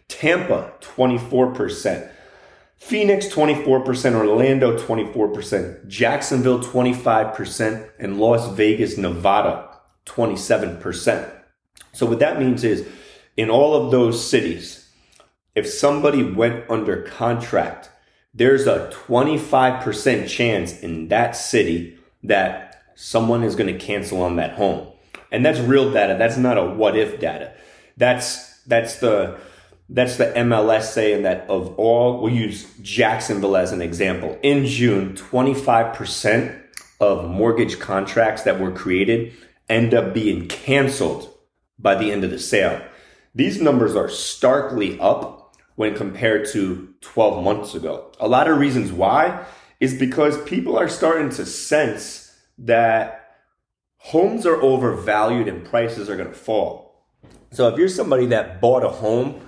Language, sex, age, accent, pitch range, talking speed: English, male, 30-49, American, 105-130 Hz, 130 wpm